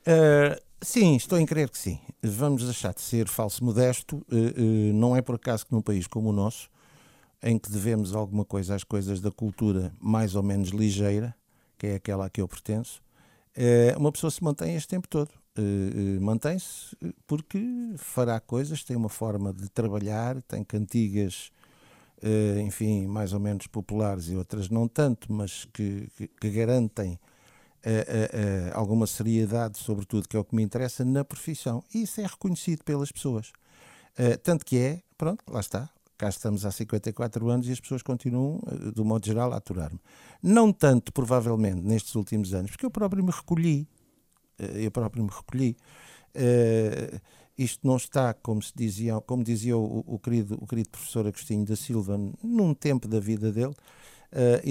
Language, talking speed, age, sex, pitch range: Portuguese, 180 wpm, 50-69, male, 105-130 Hz